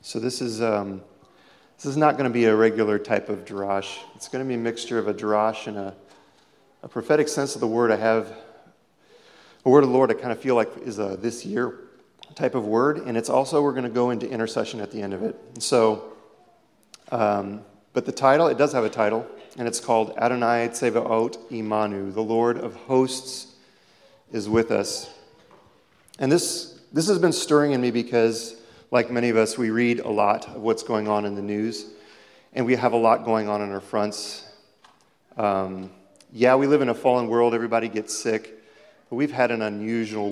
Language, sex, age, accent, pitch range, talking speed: English, male, 40-59, American, 105-120 Hz, 205 wpm